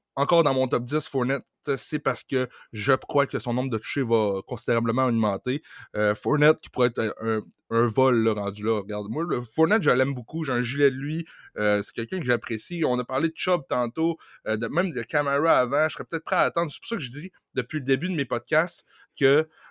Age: 20-39